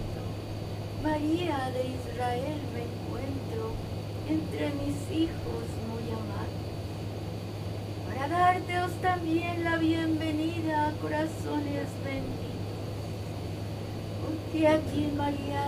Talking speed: 80 wpm